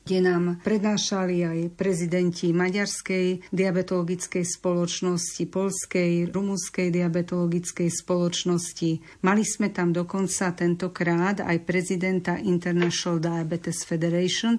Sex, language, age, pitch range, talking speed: female, Slovak, 50-69, 170-190 Hz, 90 wpm